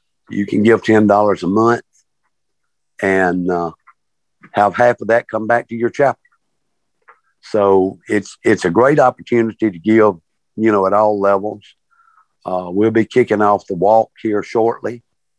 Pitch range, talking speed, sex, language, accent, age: 100-125 Hz, 150 wpm, male, English, American, 60-79